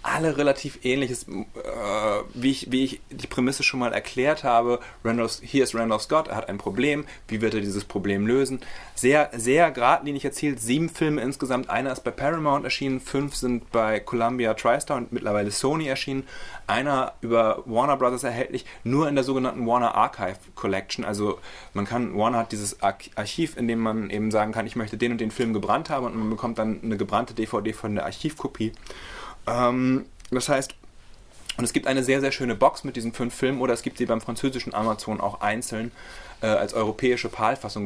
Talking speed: 190 wpm